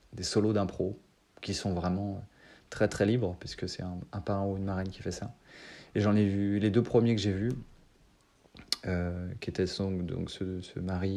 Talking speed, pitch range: 200 wpm, 95-110 Hz